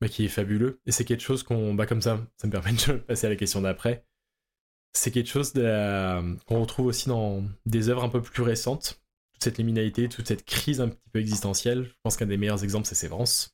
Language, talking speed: French, 235 wpm